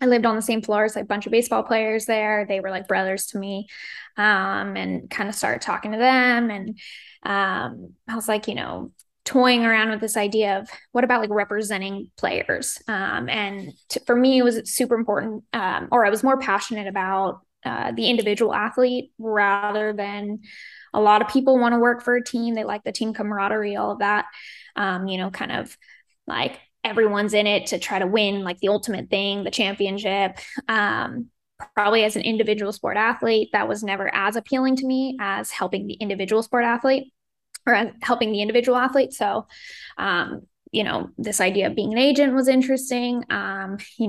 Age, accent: 10-29, American